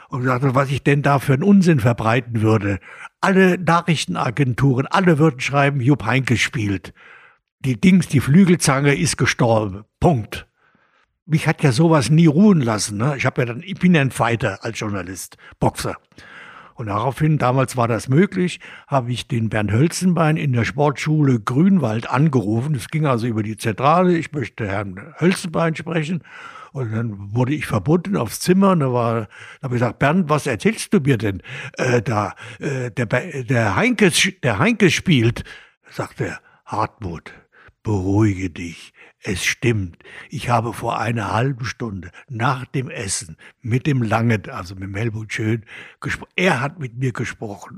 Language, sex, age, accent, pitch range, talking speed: German, male, 70-89, German, 115-155 Hz, 160 wpm